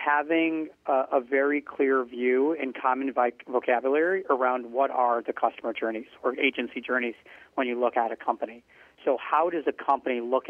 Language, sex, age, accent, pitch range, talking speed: English, male, 40-59, American, 125-150 Hz, 170 wpm